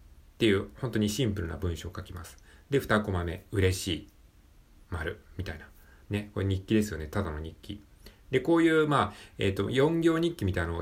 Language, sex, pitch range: Japanese, male, 90-125 Hz